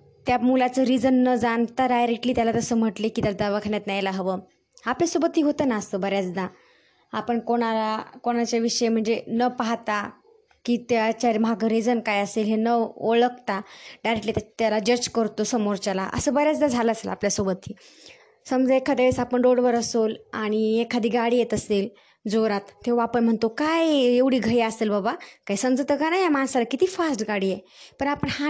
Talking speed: 165 wpm